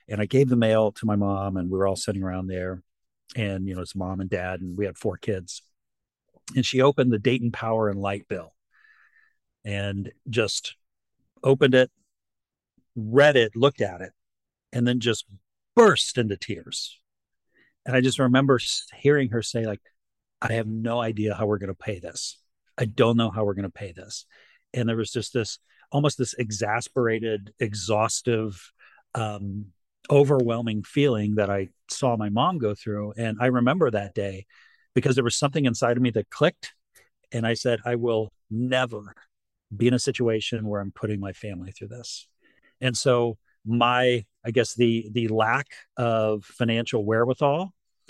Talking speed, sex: 170 wpm, male